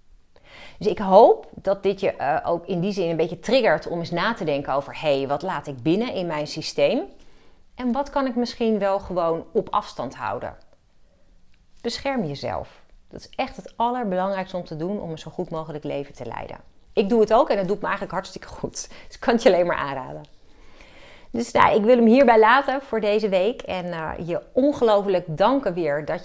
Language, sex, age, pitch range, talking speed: Dutch, female, 30-49, 155-200 Hz, 210 wpm